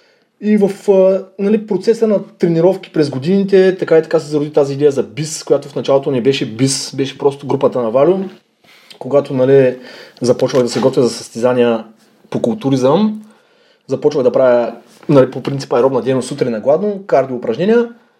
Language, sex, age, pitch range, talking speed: Bulgarian, male, 20-39, 140-215 Hz, 170 wpm